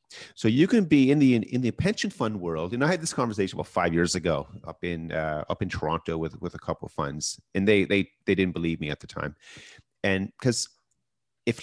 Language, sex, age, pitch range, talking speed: English, male, 40-59, 90-115 Hz, 235 wpm